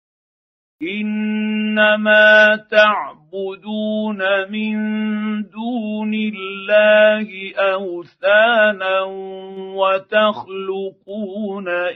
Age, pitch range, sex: 50-69, 190-215 Hz, male